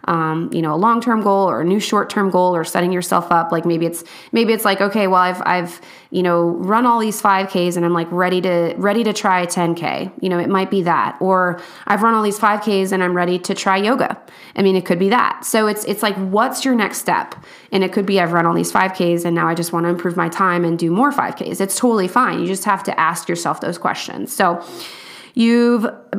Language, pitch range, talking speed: English, 175-210 Hz, 255 wpm